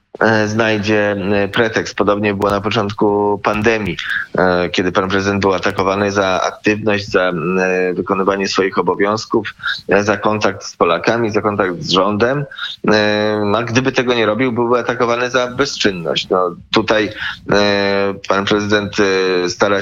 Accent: native